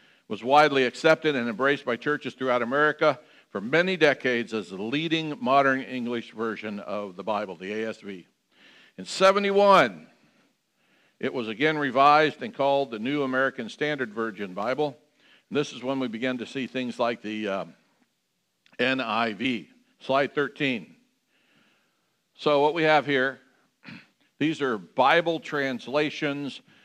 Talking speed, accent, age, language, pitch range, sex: 135 wpm, American, 60-79, English, 125-150 Hz, male